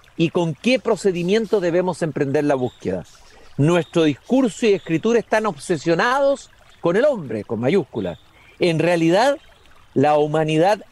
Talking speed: 125 wpm